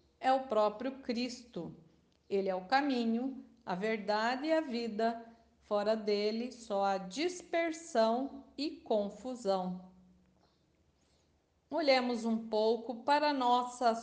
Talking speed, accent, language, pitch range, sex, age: 105 wpm, Brazilian, Portuguese, 210-265 Hz, female, 50-69